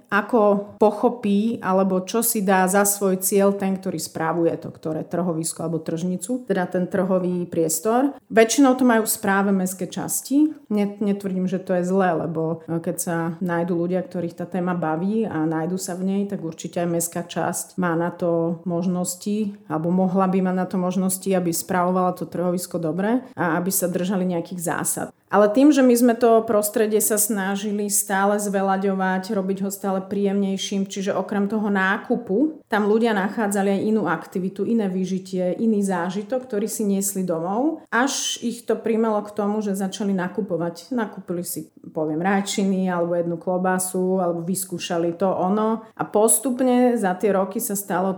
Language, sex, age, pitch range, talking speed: Slovak, female, 40-59, 180-210 Hz, 165 wpm